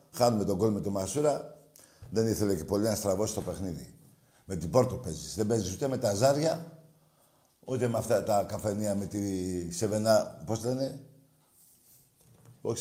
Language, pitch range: Greek, 100-135 Hz